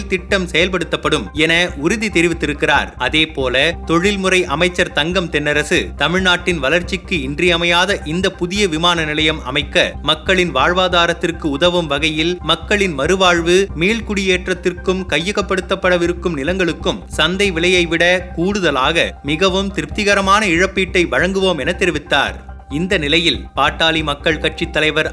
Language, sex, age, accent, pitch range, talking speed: Tamil, male, 30-49, native, 160-185 Hz, 105 wpm